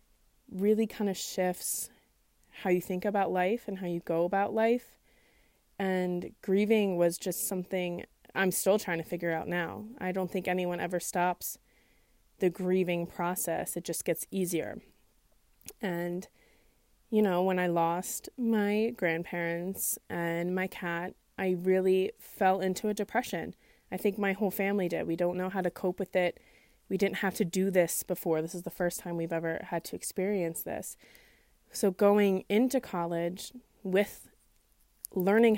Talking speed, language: 160 wpm, English